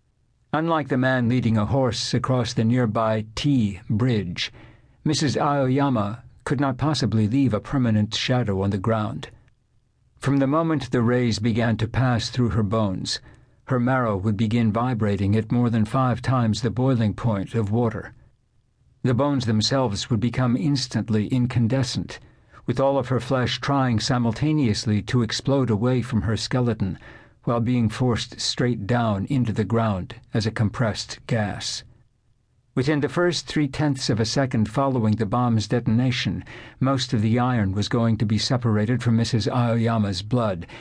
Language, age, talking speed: English, 60-79, 155 wpm